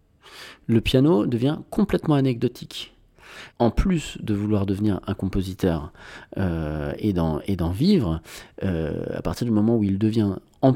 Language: French